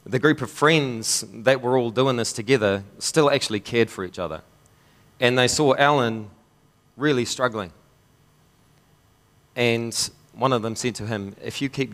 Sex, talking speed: male, 160 wpm